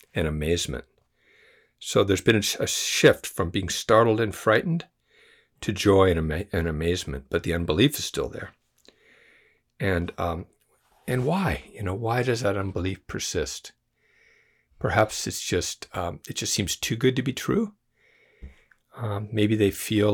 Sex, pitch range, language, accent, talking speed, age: male, 90-120 Hz, English, American, 160 wpm, 60-79